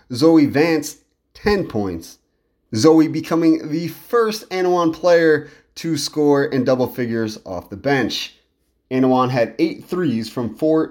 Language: English